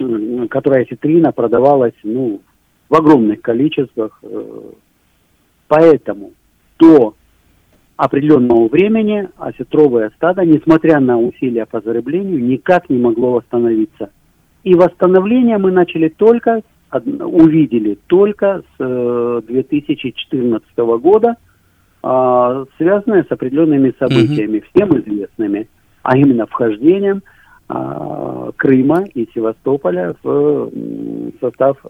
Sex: male